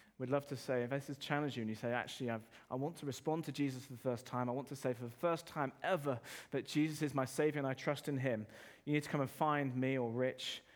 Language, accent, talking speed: English, British, 290 wpm